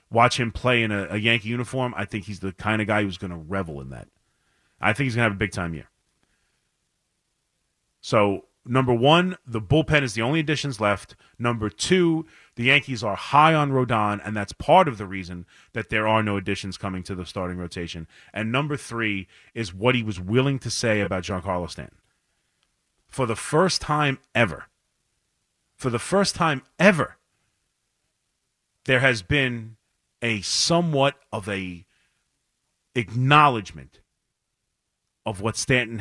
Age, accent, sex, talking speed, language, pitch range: 30-49, American, male, 165 wpm, English, 105-140 Hz